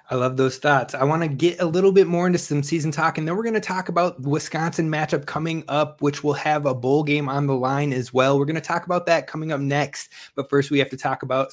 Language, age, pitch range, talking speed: English, 20-39, 145-170 Hz, 285 wpm